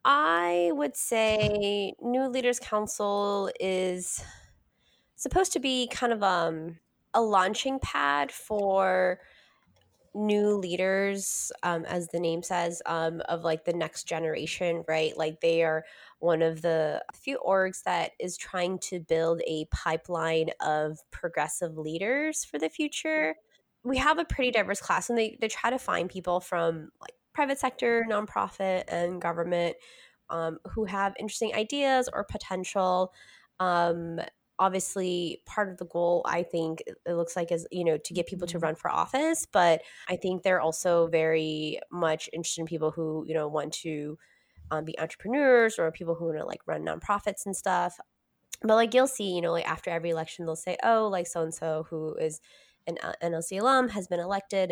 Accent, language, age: American, English, 20-39